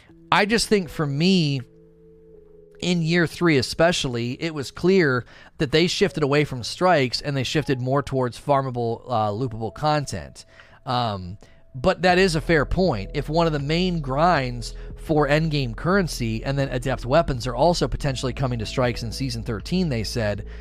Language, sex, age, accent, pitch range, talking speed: English, male, 30-49, American, 125-165 Hz, 170 wpm